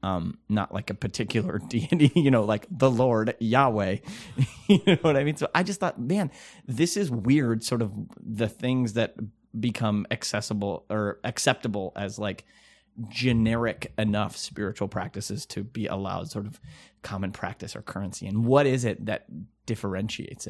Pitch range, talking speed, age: 105-125 Hz, 160 wpm, 30-49